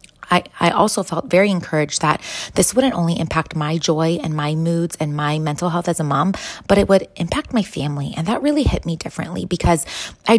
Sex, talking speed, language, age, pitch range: female, 210 wpm, English, 20-39, 150-170 Hz